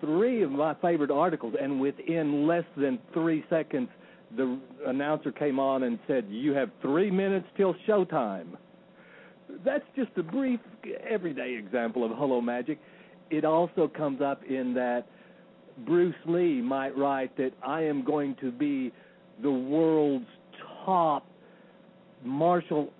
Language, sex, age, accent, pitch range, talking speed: English, male, 60-79, American, 145-190 Hz, 135 wpm